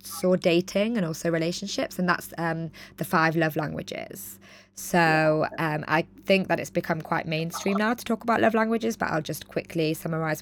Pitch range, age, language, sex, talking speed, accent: 155-180 Hz, 20-39, English, female, 185 wpm, British